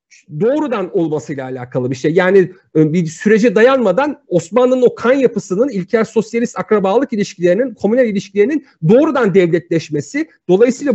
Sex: male